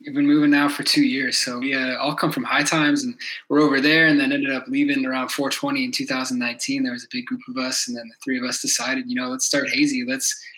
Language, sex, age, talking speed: English, male, 20-39, 270 wpm